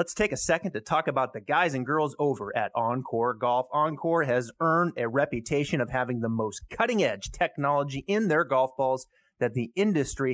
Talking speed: 190 wpm